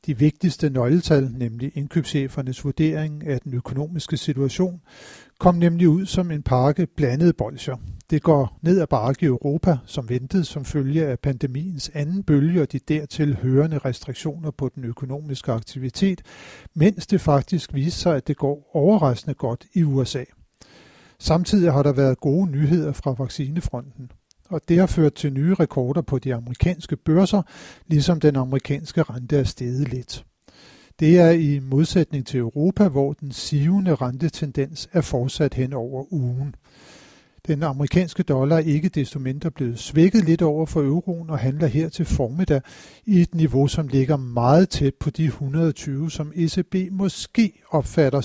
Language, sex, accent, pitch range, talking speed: Danish, male, native, 135-165 Hz, 155 wpm